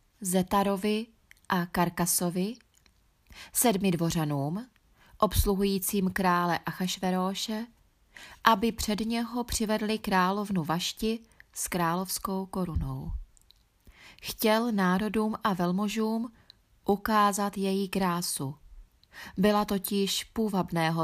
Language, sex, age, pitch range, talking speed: Czech, female, 30-49, 175-210 Hz, 75 wpm